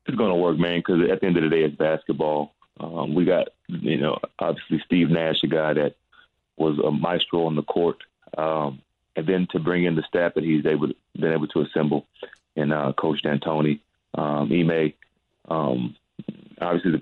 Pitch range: 75-85 Hz